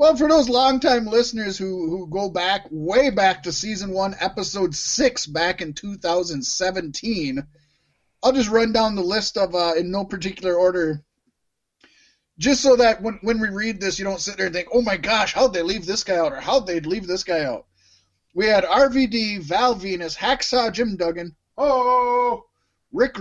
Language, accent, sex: English, American, male